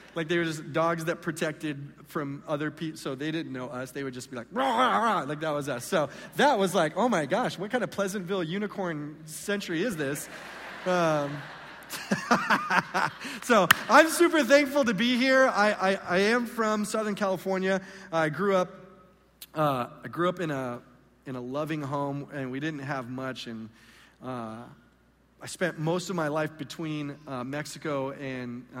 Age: 40-59